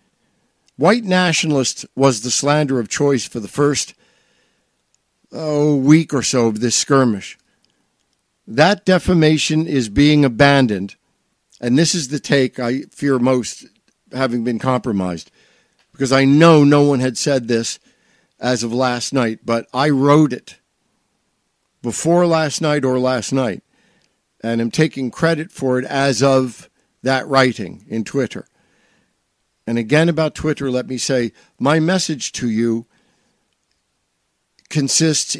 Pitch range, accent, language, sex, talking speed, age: 120-150 Hz, American, English, male, 135 wpm, 60-79